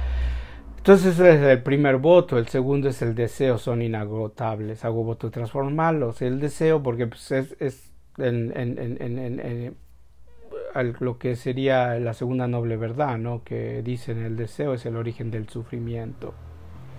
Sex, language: male, Spanish